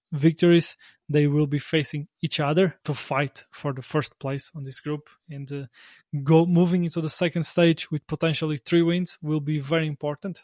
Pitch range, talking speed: 135-160 Hz, 185 wpm